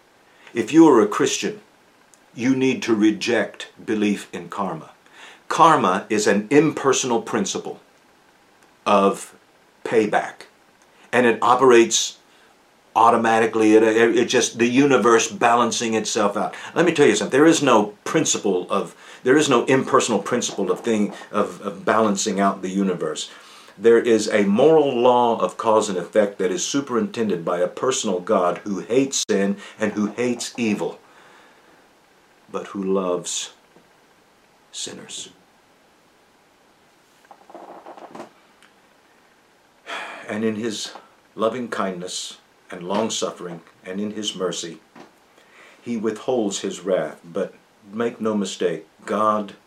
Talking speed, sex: 120 wpm, male